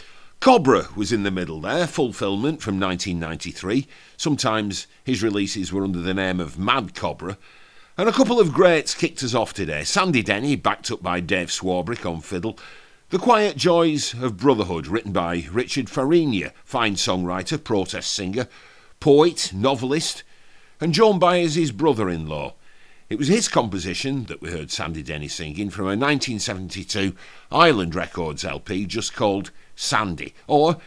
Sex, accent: male, British